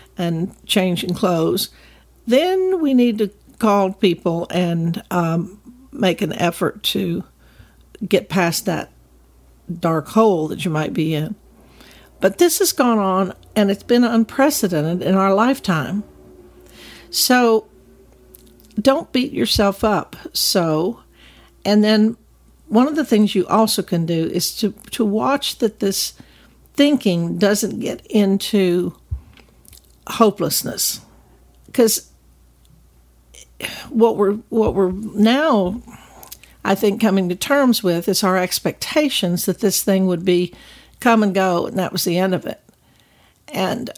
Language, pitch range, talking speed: English, 175-225 Hz, 130 wpm